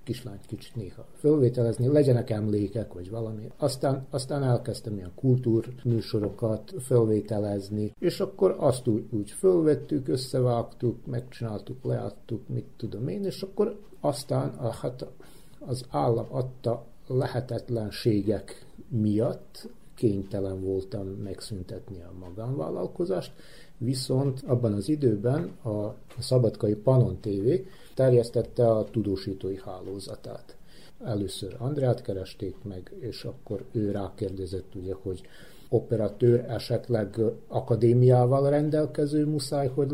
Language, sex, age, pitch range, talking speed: Hungarian, male, 60-79, 105-130 Hz, 100 wpm